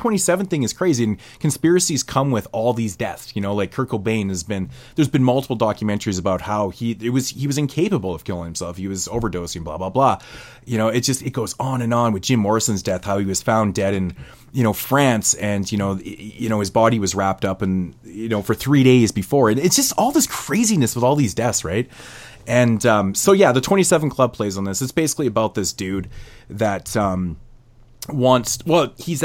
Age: 30-49